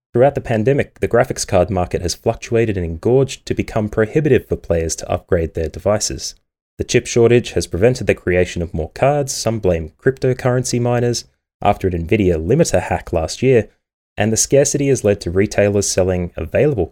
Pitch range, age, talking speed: 85-115 Hz, 20-39, 175 wpm